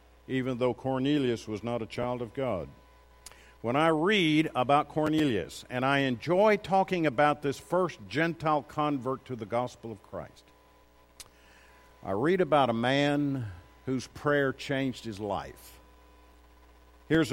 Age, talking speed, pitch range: 50-69, 135 wpm, 95-145 Hz